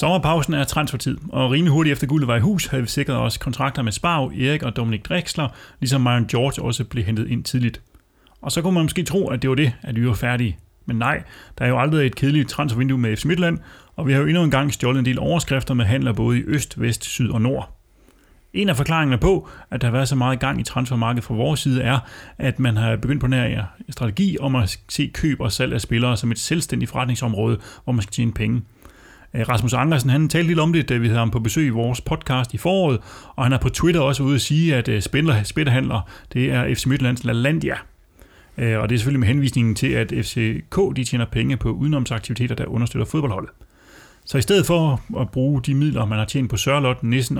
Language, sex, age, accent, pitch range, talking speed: Danish, male, 30-49, native, 115-145 Hz, 230 wpm